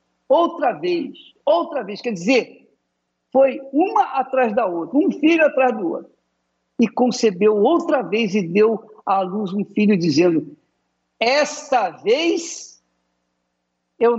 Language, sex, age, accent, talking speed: Portuguese, male, 60-79, Brazilian, 125 wpm